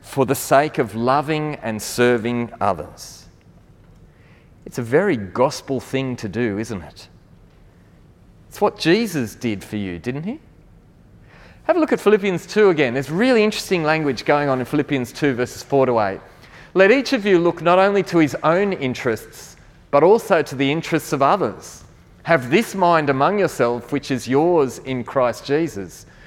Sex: male